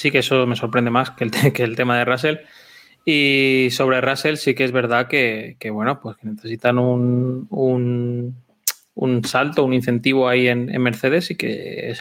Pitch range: 115-130 Hz